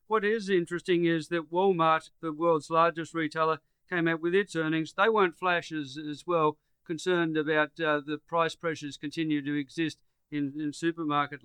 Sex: male